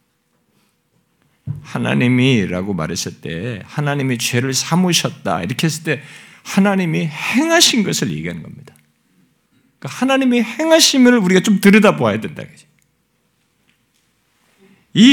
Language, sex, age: Korean, male, 50-69